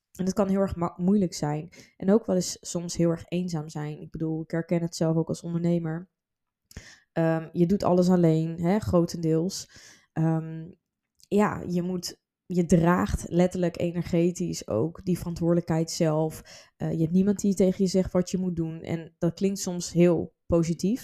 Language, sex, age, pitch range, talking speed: Dutch, female, 20-39, 160-180 Hz, 180 wpm